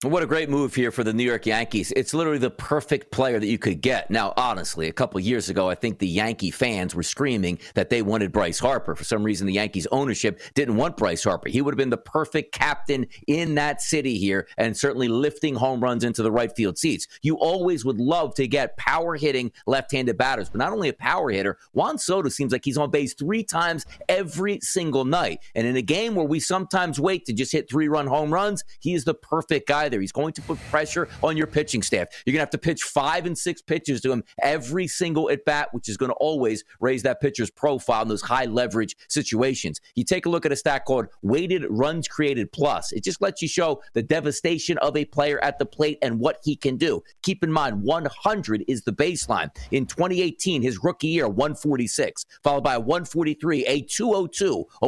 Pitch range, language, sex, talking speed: 120-165 Hz, English, male, 225 wpm